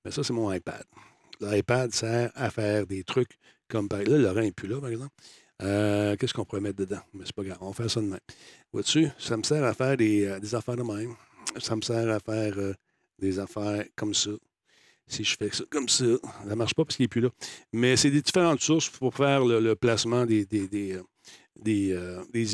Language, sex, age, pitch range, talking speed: French, male, 60-79, 105-125 Hz, 245 wpm